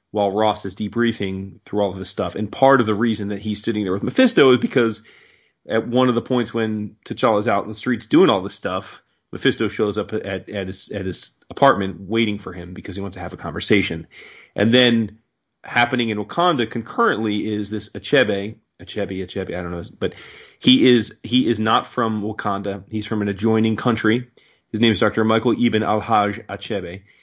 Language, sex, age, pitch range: English, male, 30-49, 100-120 Hz